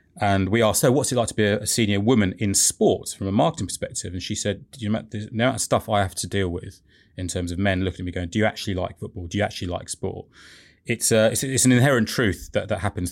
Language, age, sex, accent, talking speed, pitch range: English, 20-39, male, British, 265 wpm, 95-110 Hz